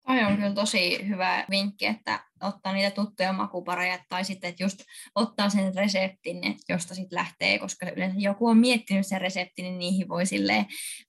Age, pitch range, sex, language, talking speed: 20-39, 180-215 Hz, female, Finnish, 175 wpm